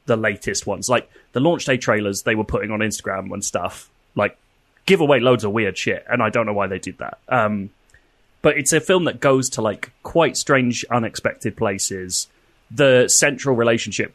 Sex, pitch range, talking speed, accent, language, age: male, 100-135 Hz, 195 wpm, British, English, 20-39